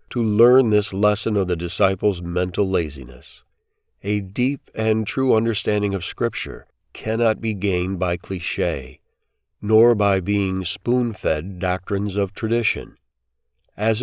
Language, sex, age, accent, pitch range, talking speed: English, male, 50-69, American, 95-110 Hz, 125 wpm